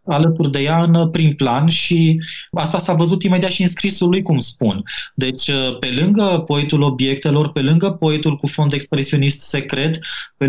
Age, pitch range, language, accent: 20-39, 120-165 Hz, Romanian, native